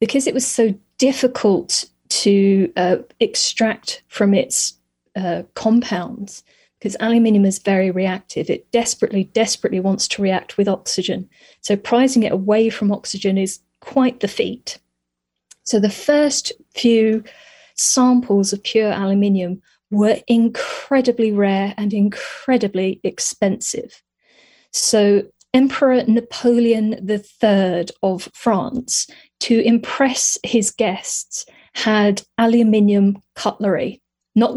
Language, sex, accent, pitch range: English, female, British, 195-235 Hz